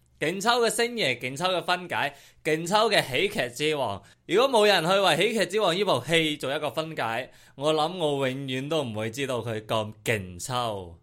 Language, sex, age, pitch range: Chinese, male, 20-39, 120-190 Hz